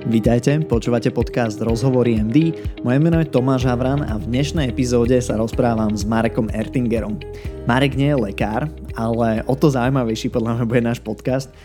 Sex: male